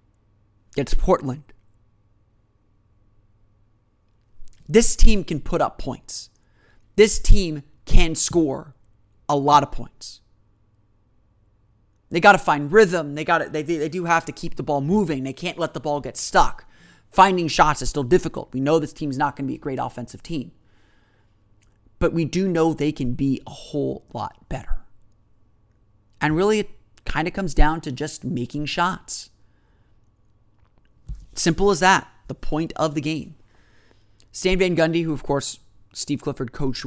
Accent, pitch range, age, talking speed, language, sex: American, 105-160 Hz, 30-49, 155 wpm, English, male